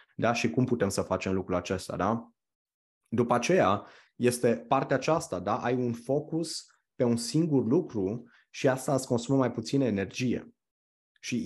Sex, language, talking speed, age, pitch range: male, Romanian, 155 wpm, 20-39, 115-135 Hz